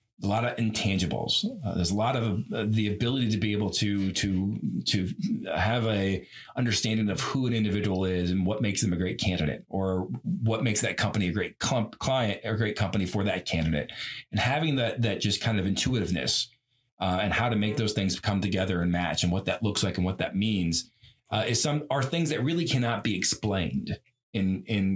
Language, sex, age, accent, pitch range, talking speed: English, male, 40-59, American, 95-120 Hz, 210 wpm